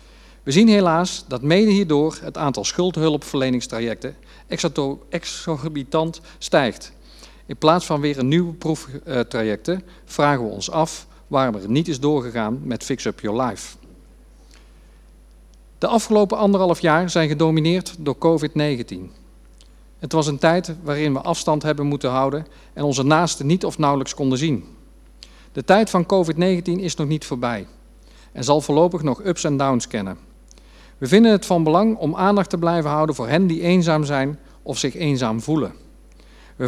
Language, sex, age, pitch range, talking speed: Dutch, male, 50-69, 135-170 Hz, 155 wpm